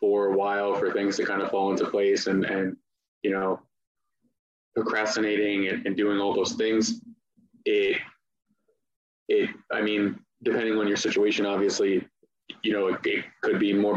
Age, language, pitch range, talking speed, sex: 20-39, English, 100-125 Hz, 165 wpm, male